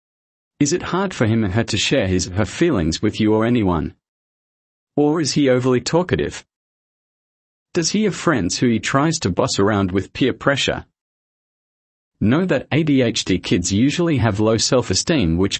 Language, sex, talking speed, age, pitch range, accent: English, male, 170 wpm, 40-59, 95-135 Hz, Australian